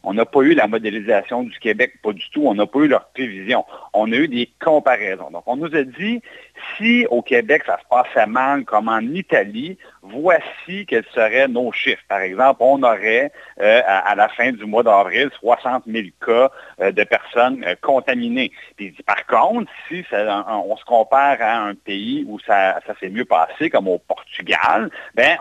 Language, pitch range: French, 110-150 Hz